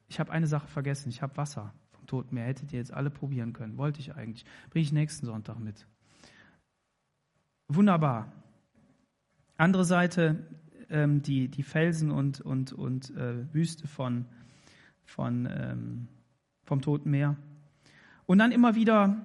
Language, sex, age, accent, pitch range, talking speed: German, male, 30-49, German, 130-160 Hz, 145 wpm